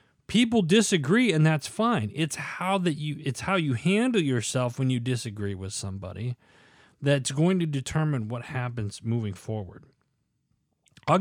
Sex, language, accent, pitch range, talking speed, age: male, English, American, 110-145 Hz, 150 wpm, 40-59